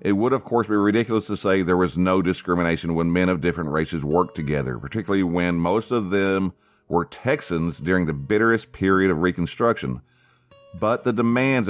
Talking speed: 180 wpm